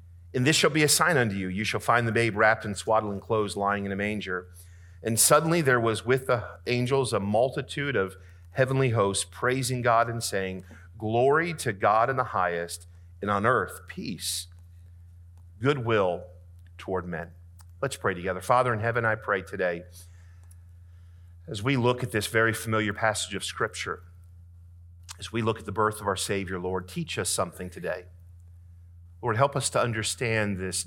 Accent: American